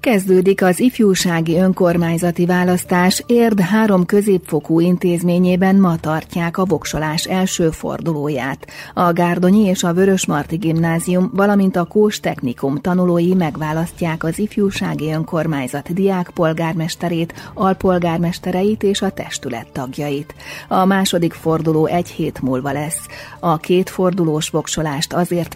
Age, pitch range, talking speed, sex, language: 30-49, 155-185 Hz, 115 wpm, female, Hungarian